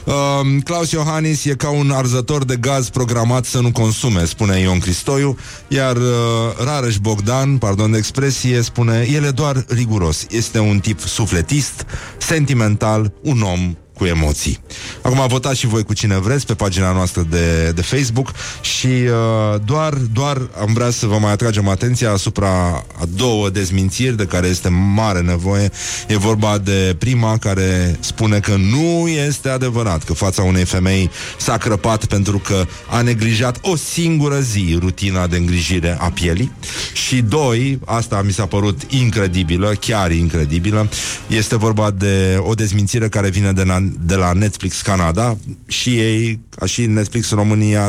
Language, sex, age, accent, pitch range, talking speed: Romanian, male, 30-49, native, 95-125 Hz, 160 wpm